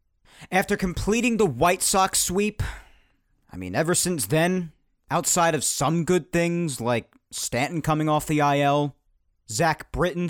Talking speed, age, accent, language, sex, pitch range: 140 wpm, 40-59, American, English, male, 135-185 Hz